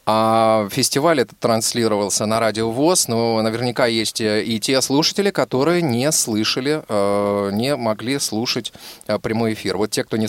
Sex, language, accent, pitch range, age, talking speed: male, Russian, native, 105-140 Hz, 20-39, 145 wpm